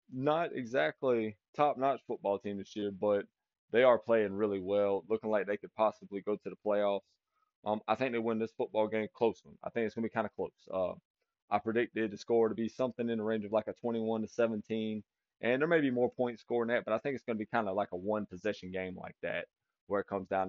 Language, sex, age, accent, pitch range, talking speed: English, male, 20-39, American, 100-125 Hz, 250 wpm